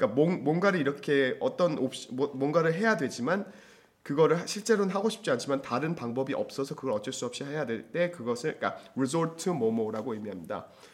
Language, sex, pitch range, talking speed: English, male, 120-180 Hz, 150 wpm